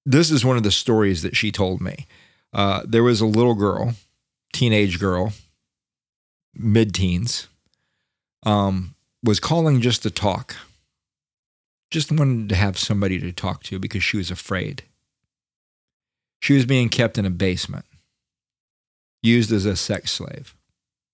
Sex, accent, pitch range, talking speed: male, American, 95-125 Hz, 135 wpm